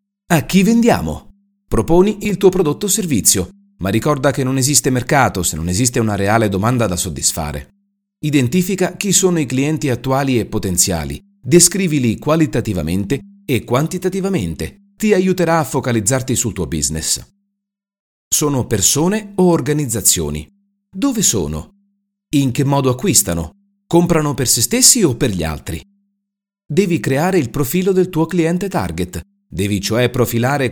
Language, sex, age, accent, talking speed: Italian, male, 40-59, native, 140 wpm